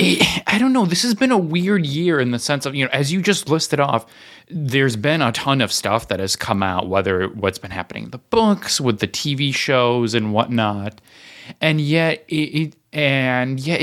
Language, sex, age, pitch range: English, male, 20-39, 110-150 Hz